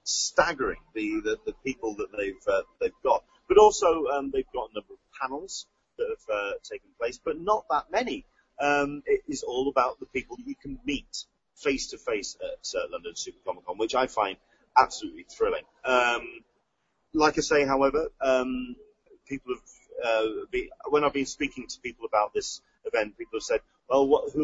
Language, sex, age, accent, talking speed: English, male, 30-49, British, 185 wpm